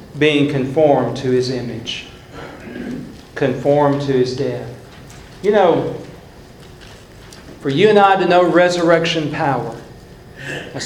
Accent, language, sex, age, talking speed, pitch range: American, English, male, 50-69, 110 wpm, 135-175 Hz